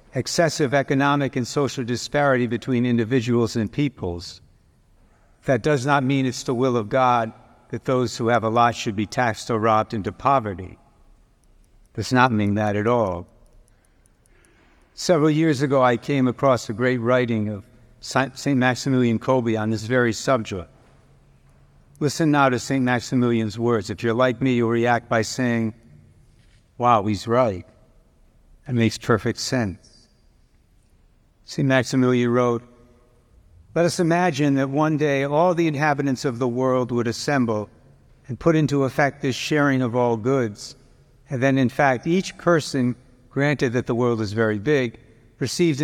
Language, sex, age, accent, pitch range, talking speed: English, male, 60-79, American, 115-140 Hz, 150 wpm